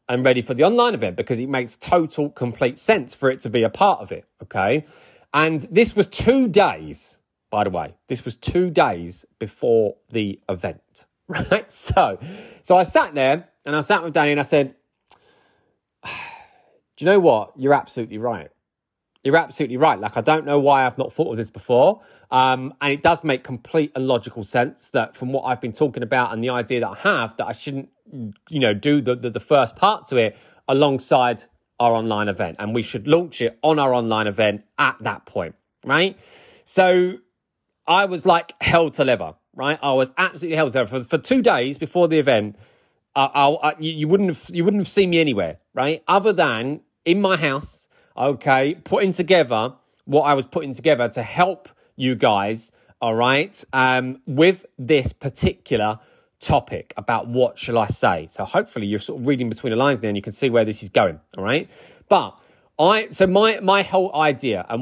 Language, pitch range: English, 120-160 Hz